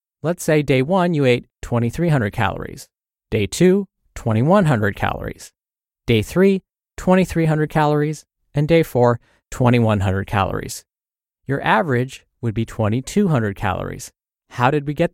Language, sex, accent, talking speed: English, male, American, 125 wpm